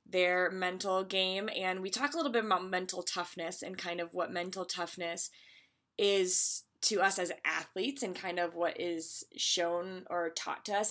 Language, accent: English, American